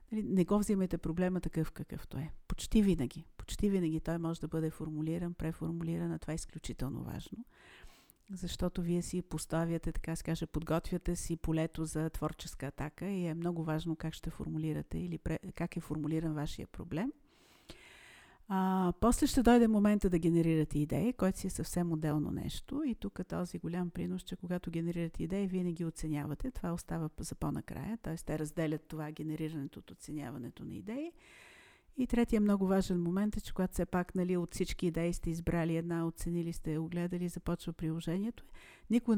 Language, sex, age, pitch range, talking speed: Bulgarian, female, 50-69, 160-185 Hz, 165 wpm